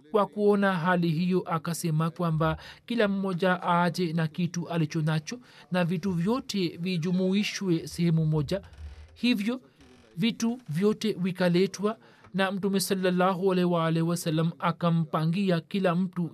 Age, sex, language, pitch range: 40-59, male, Swahili, 170-210 Hz